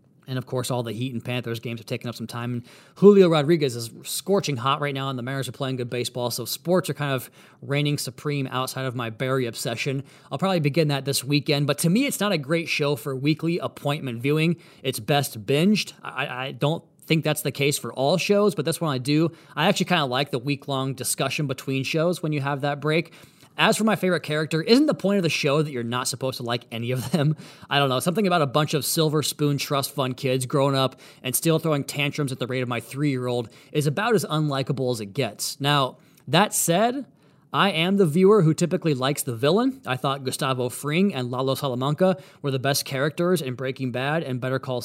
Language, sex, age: English, male, 20-39